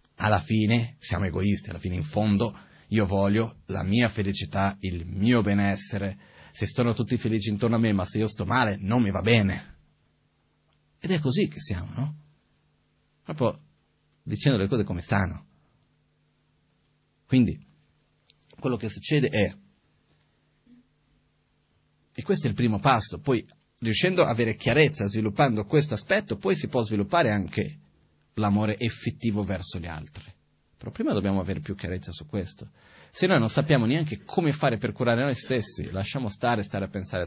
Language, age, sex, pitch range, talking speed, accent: Italian, 30-49, male, 95-125 Hz, 155 wpm, native